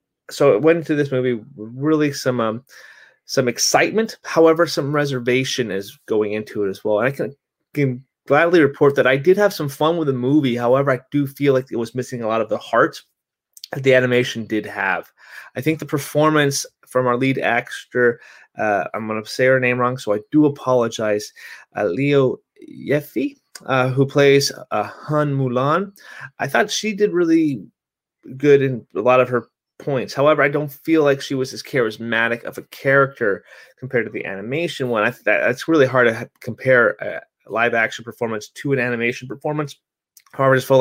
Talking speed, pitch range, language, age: 190 wpm, 115-145 Hz, English, 30-49